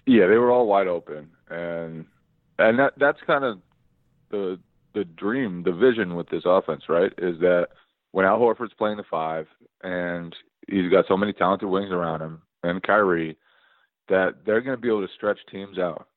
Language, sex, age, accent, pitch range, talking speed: English, male, 30-49, American, 85-115 Hz, 185 wpm